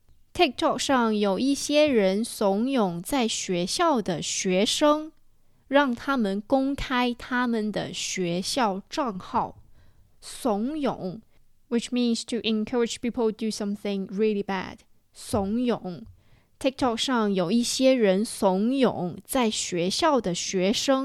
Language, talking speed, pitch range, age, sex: English, 35 wpm, 195-270 Hz, 20-39, female